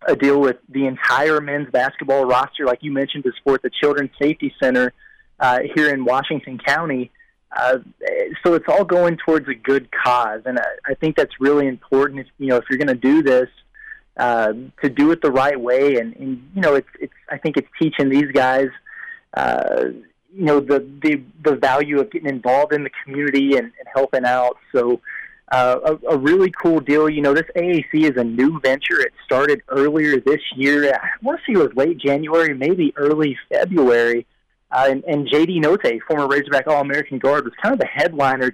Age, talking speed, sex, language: 30-49, 200 wpm, male, English